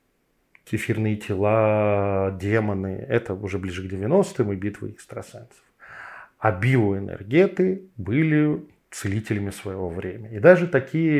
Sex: male